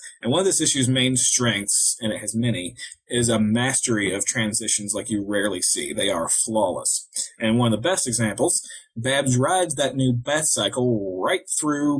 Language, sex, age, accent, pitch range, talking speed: English, male, 20-39, American, 110-130 Hz, 185 wpm